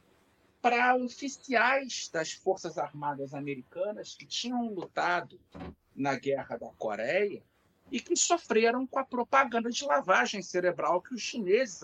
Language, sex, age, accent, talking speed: Portuguese, male, 50-69, Brazilian, 125 wpm